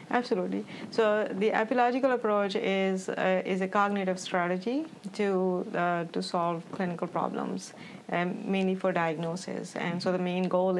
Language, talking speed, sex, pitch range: English, 145 wpm, female, 170-195 Hz